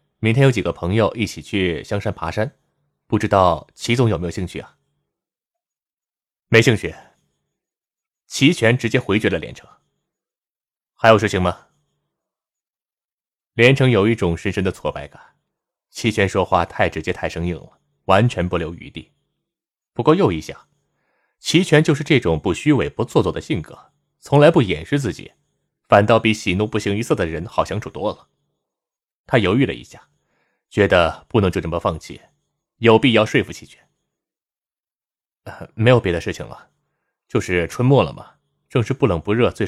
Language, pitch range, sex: Chinese, 95-135 Hz, male